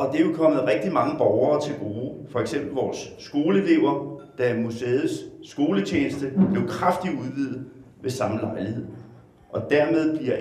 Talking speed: 150 wpm